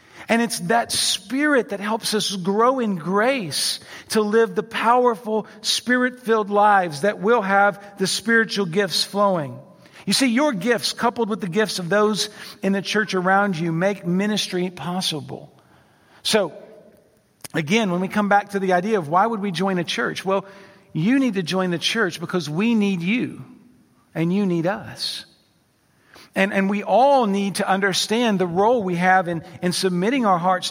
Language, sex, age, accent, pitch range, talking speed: English, male, 50-69, American, 175-215 Hz, 170 wpm